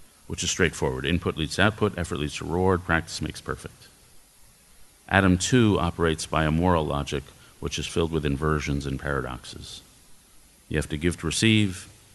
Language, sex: English, male